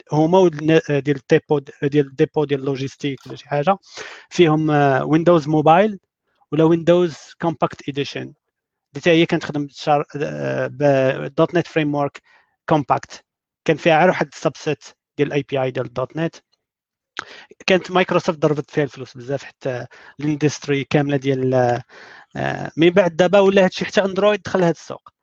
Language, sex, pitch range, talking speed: Arabic, male, 140-175 Hz, 140 wpm